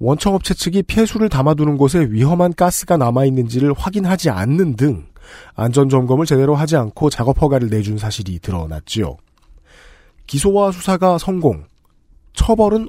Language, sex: Korean, male